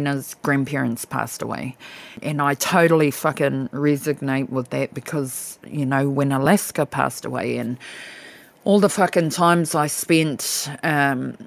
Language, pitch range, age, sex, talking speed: English, 140-165 Hz, 30-49, female, 130 wpm